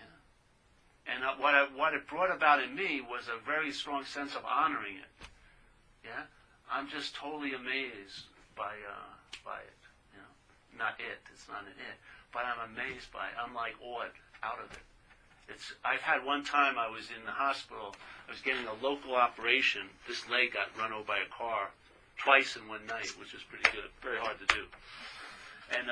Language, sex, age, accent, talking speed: English, male, 50-69, American, 190 wpm